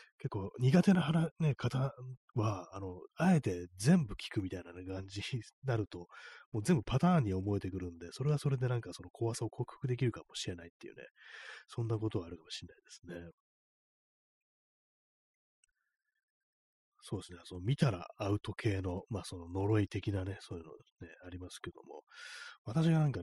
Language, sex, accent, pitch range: Japanese, male, native, 90-140 Hz